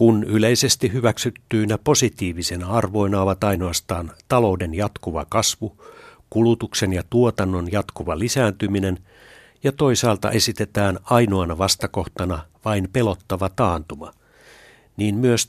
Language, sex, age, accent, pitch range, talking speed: Finnish, male, 60-79, native, 90-115 Hz, 95 wpm